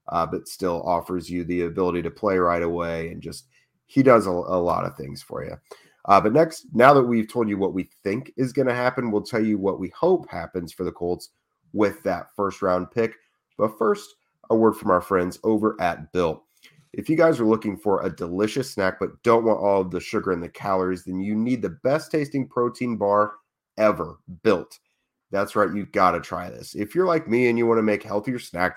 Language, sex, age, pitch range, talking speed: English, male, 30-49, 90-120 Hz, 225 wpm